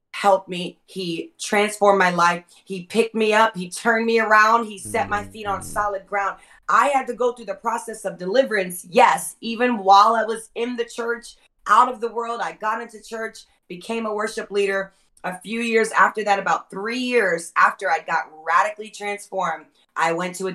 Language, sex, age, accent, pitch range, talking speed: English, female, 30-49, American, 175-215 Hz, 195 wpm